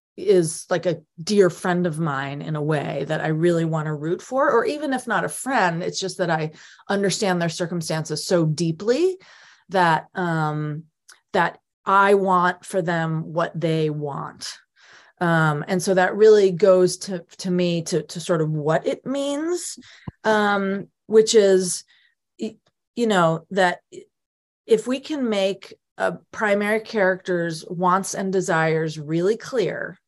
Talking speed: 150 wpm